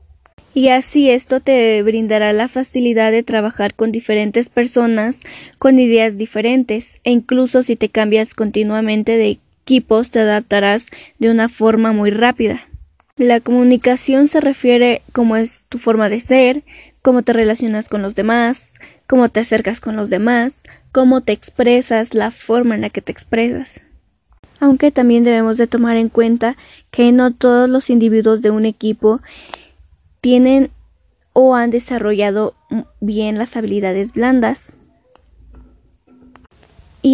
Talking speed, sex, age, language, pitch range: 140 wpm, female, 20-39, Spanish, 215-250 Hz